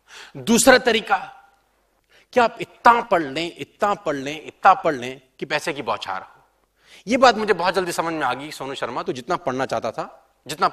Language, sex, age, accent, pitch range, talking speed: Hindi, male, 30-49, native, 155-240 Hz, 195 wpm